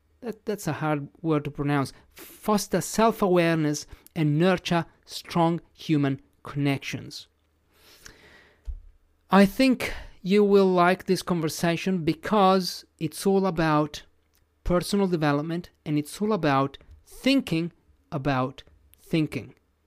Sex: male